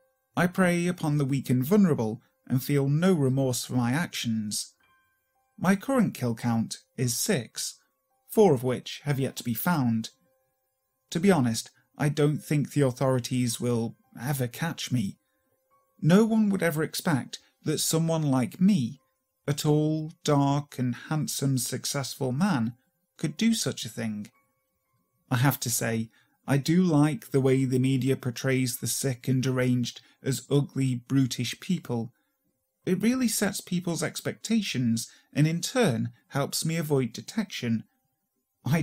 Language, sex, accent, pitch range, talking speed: English, male, British, 125-170 Hz, 145 wpm